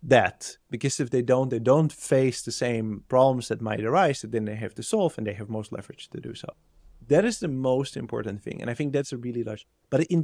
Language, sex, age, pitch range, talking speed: English, male, 30-49, 115-140 Hz, 245 wpm